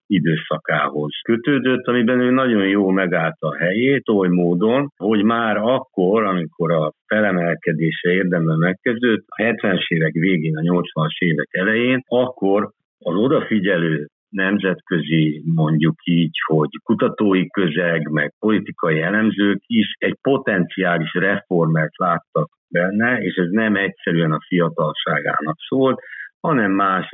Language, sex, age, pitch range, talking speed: Hungarian, male, 50-69, 80-105 Hz, 120 wpm